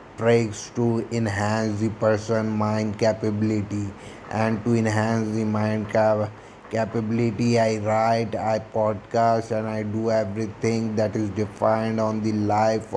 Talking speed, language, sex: 130 wpm, Hindi, male